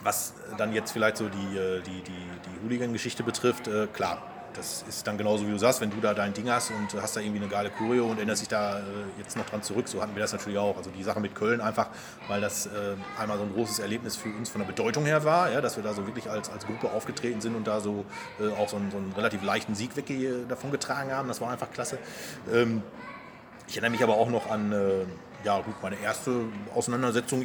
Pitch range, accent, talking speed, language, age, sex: 100-120 Hz, German, 235 wpm, German, 30-49, male